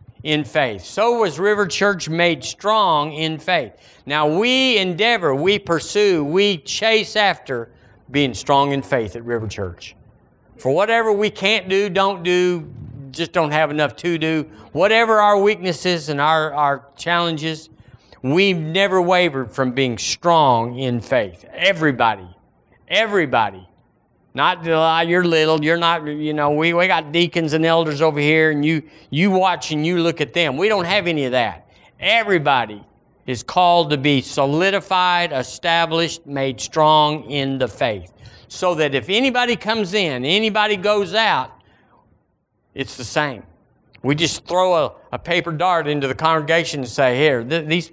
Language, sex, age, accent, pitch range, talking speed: English, male, 50-69, American, 135-180 Hz, 155 wpm